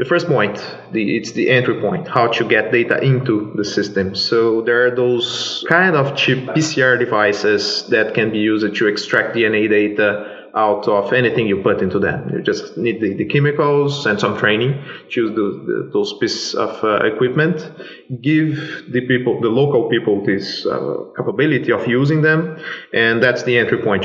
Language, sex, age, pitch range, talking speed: English, male, 20-39, 115-145 Hz, 175 wpm